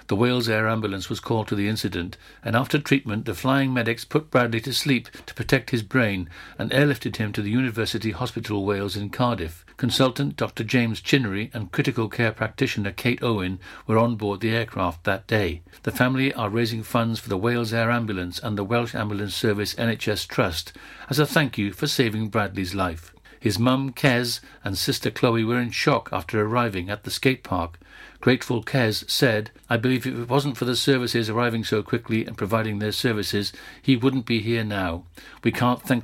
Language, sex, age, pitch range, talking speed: English, male, 60-79, 105-125 Hz, 195 wpm